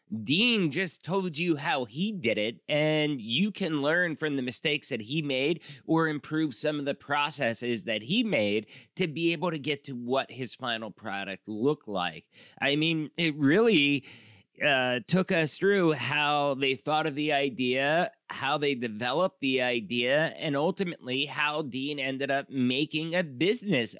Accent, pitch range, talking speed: American, 125-165 Hz, 170 wpm